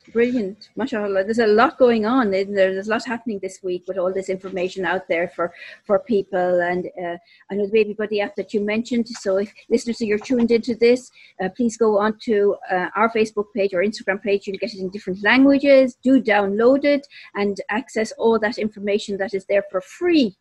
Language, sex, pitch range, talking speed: English, female, 195-235 Hz, 220 wpm